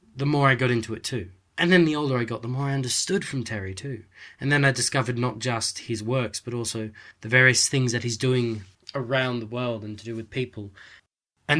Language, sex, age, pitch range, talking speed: English, male, 20-39, 105-130 Hz, 235 wpm